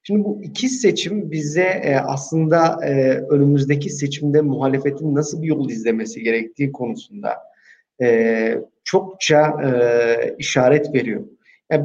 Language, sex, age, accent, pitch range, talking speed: Turkish, male, 40-59, native, 135-155 Hz, 95 wpm